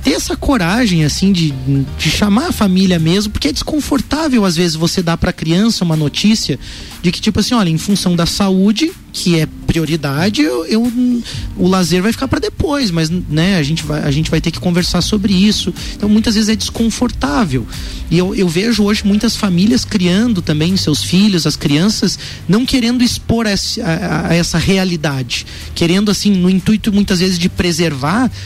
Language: Portuguese